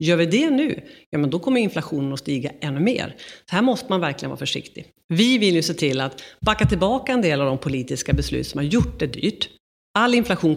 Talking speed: 235 wpm